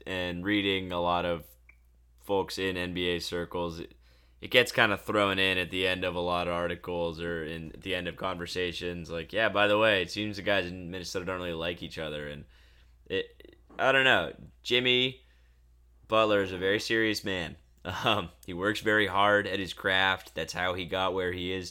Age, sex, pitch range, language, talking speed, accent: 10-29, male, 80-105 Hz, English, 200 wpm, American